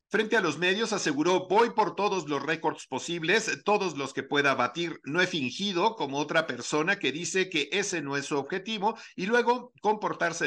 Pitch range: 145-180 Hz